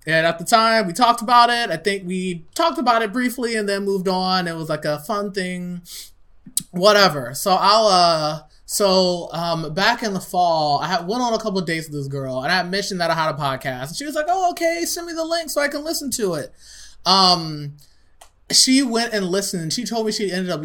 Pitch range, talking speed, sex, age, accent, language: 160-225 Hz, 240 wpm, male, 20-39, American, English